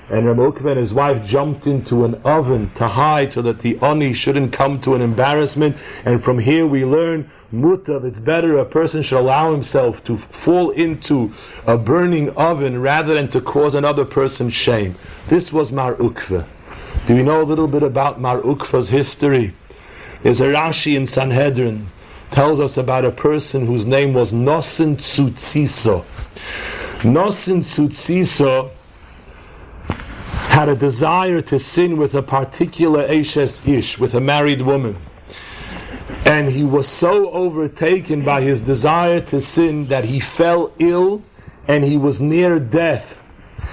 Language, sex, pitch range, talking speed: English, male, 130-155 Hz, 145 wpm